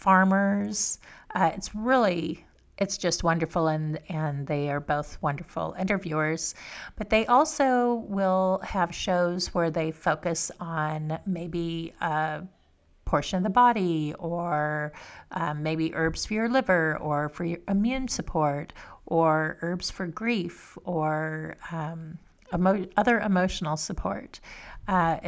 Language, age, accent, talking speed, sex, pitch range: English, 30-49, American, 125 wpm, female, 160-200 Hz